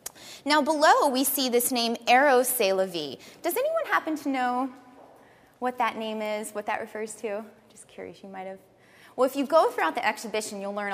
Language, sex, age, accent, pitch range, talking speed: English, female, 20-39, American, 200-290 Hz, 195 wpm